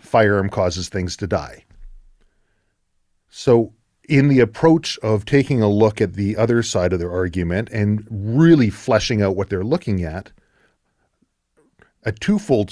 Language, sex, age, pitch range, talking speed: English, male, 40-59, 95-130 Hz, 140 wpm